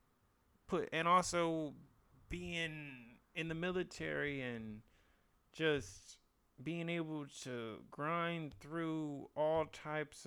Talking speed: 95 wpm